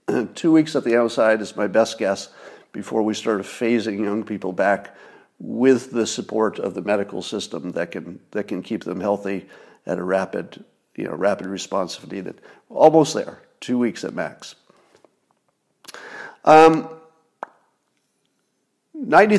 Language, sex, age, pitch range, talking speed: English, male, 50-69, 110-160 Hz, 135 wpm